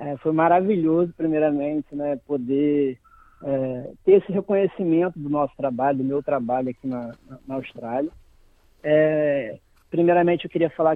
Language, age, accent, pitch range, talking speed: Portuguese, 20-39, Brazilian, 150-195 Hz, 135 wpm